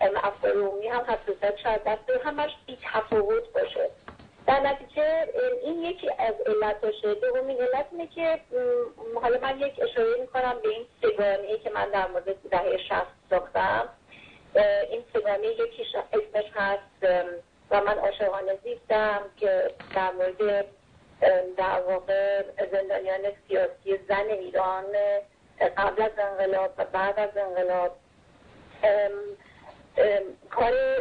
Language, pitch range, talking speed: Persian, 195-320 Hz, 35 wpm